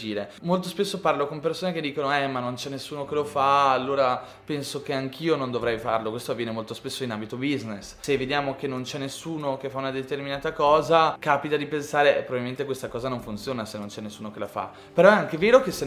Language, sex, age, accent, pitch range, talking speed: Italian, male, 20-39, native, 130-160 Hz, 235 wpm